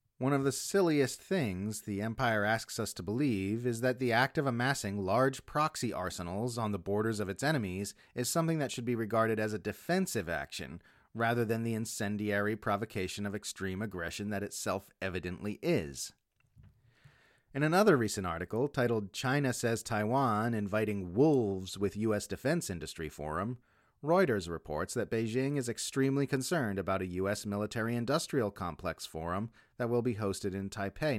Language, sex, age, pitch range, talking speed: English, male, 30-49, 100-130 Hz, 160 wpm